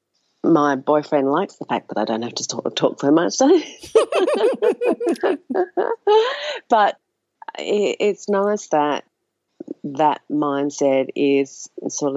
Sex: female